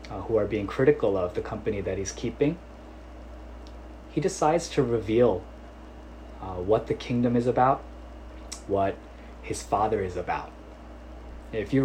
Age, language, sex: 20-39, Korean, male